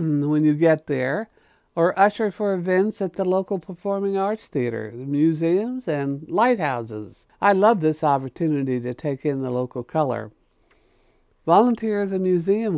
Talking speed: 150 wpm